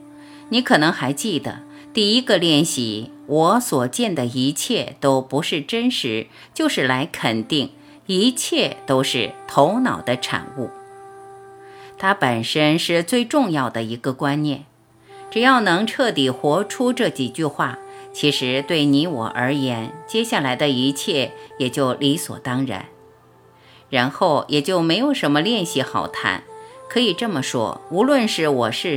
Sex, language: female, Chinese